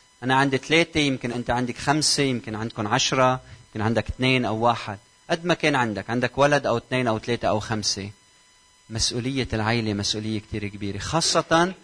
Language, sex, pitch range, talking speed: Arabic, male, 110-140 Hz, 170 wpm